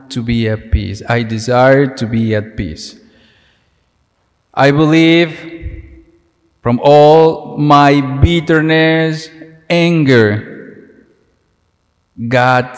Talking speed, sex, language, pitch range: 85 wpm, male, English, 110-150 Hz